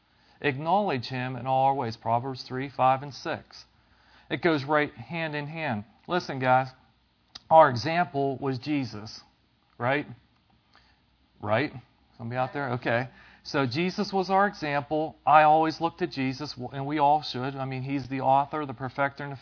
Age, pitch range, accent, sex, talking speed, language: 40-59, 125-160 Hz, American, male, 160 wpm, English